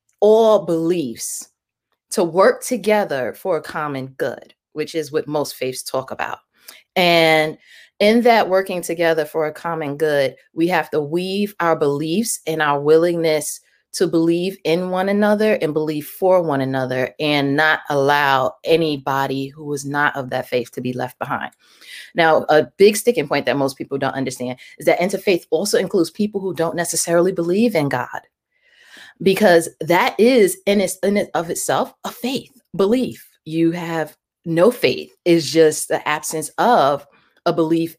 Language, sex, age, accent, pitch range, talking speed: English, female, 20-39, American, 145-185 Hz, 160 wpm